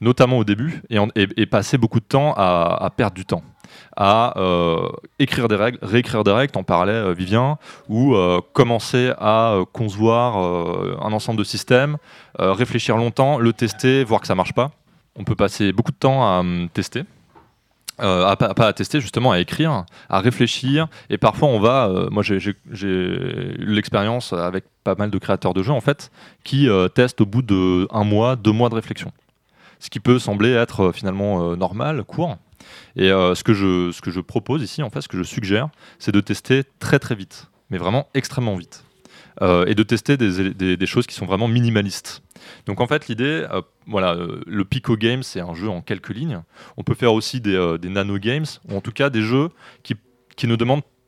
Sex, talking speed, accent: male, 215 wpm, French